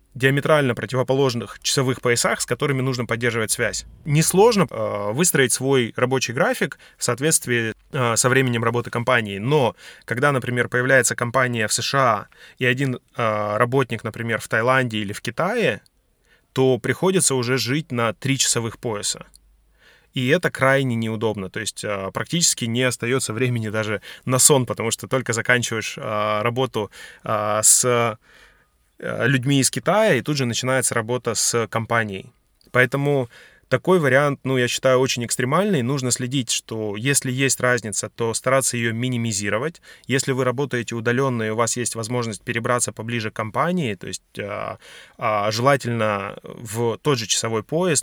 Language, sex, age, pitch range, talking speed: Russian, male, 20-39, 110-130 Hz, 140 wpm